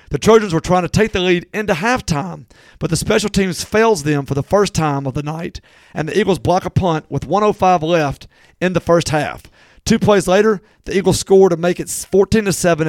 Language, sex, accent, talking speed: English, male, American, 215 wpm